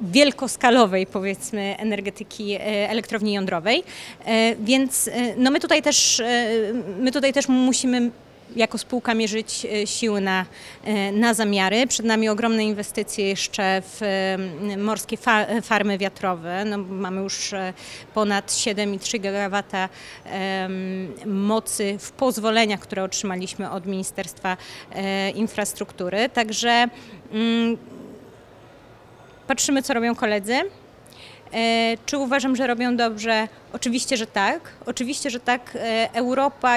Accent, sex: native, female